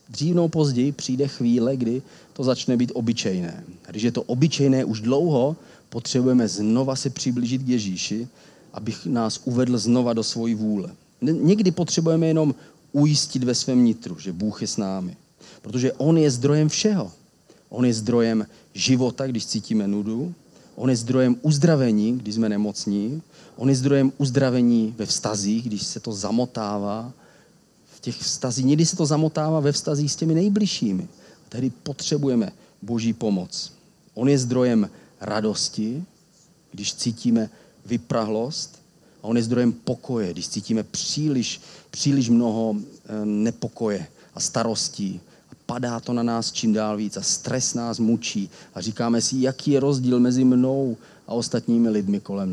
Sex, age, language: male, 40-59, Czech